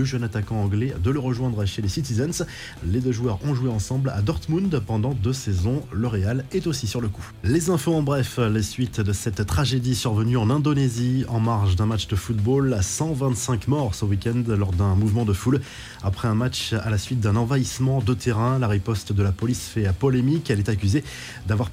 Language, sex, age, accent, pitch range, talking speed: French, male, 20-39, French, 105-135 Hz, 205 wpm